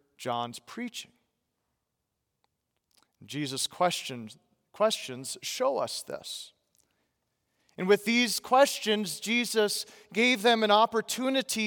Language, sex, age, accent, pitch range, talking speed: English, male, 40-59, American, 170-220 Hz, 85 wpm